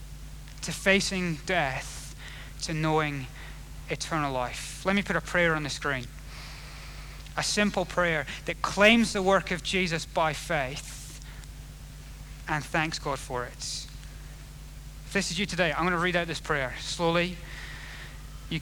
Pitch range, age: 145-180 Hz, 30-49